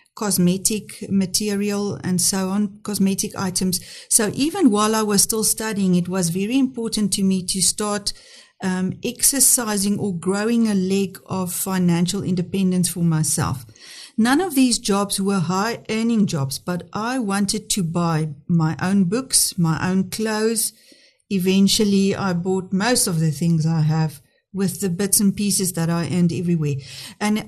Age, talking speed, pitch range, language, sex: 50-69, 155 wpm, 180-220 Hz, English, female